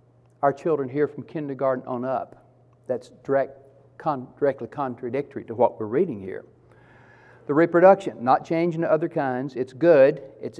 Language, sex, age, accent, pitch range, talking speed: English, male, 50-69, American, 125-165 Hz, 145 wpm